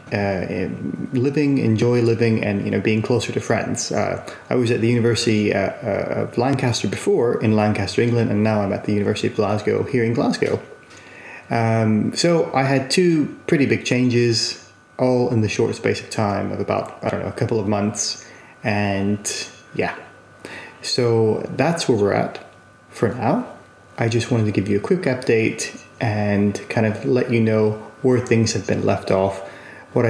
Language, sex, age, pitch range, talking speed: English, male, 30-49, 105-125 Hz, 180 wpm